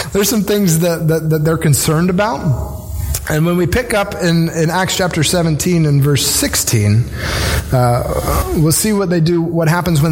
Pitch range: 115-175 Hz